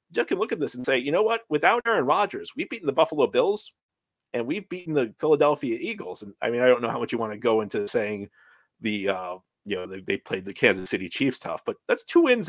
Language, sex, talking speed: English, male, 260 wpm